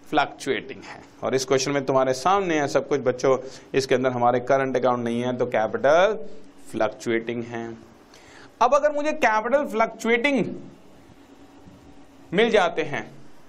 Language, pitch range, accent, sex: Hindi, 145-225 Hz, native, male